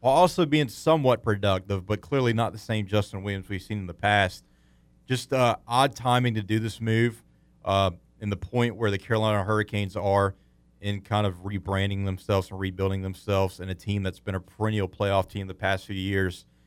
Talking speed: 200 wpm